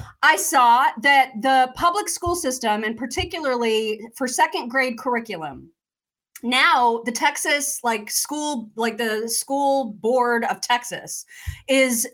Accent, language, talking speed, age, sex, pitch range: American, English, 125 wpm, 30-49, female, 230-295 Hz